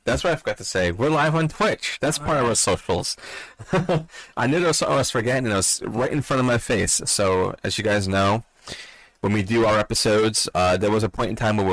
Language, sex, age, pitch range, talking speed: English, male, 30-49, 90-115 Hz, 255 wpm